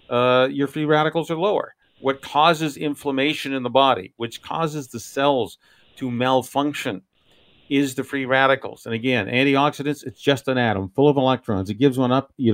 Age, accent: 50-69, American